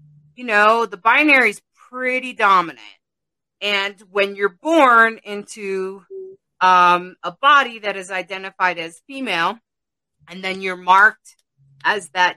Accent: American